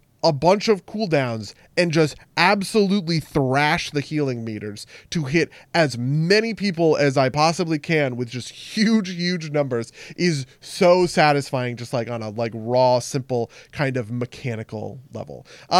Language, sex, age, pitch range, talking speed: English, male, 20-39, 130-175 Hz, 150 wpm